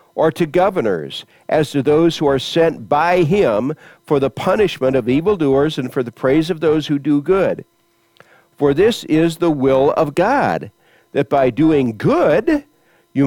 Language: English